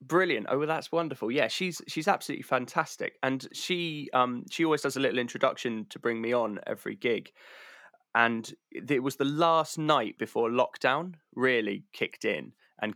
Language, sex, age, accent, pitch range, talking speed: English, male, 20-39, British, 110-140 Hz, 170 wpm